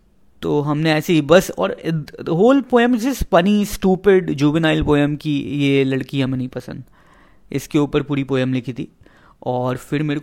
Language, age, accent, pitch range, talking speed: Hindi, 20-39, native, 130-155 Hz, 165 wpm